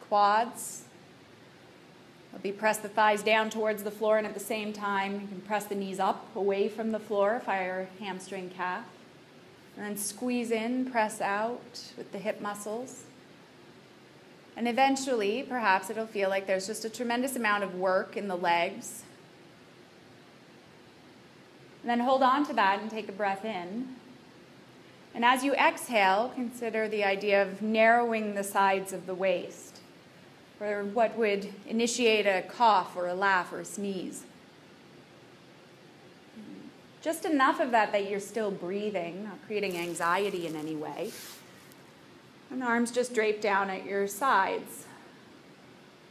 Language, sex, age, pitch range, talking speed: English, female, 20-39, 195-225 Hz, 145 wpm